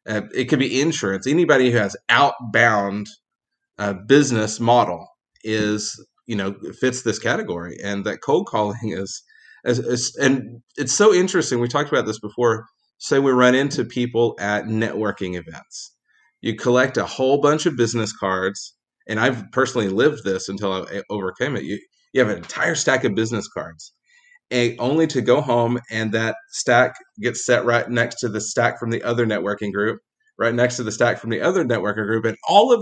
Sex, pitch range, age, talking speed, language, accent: male, 105-130 Hz, 30-49, 185 wpm, English, American